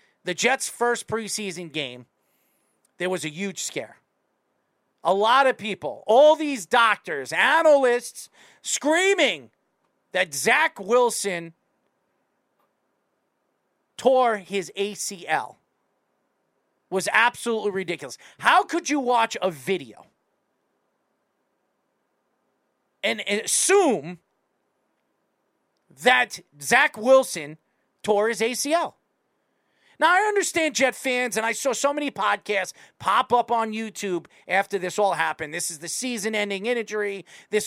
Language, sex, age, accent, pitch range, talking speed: English, male, 40-59, American, 195-250 Hz, 105 wpm